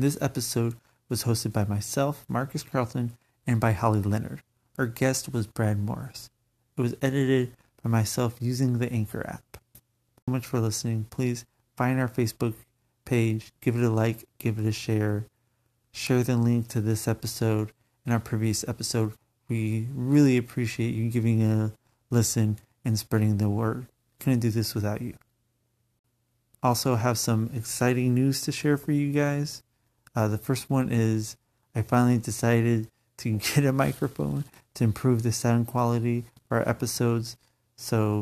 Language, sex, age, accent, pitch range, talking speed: English, male, 30-49, American, 110-125 Hz, 160 wpm